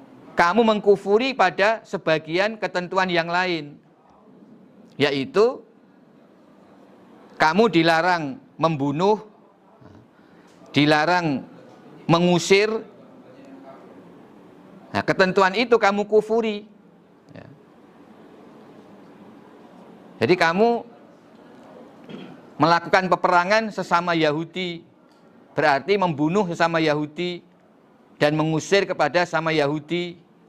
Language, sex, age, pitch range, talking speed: Indonesian, male, 50-69, 150-200 Hz, 65 wpm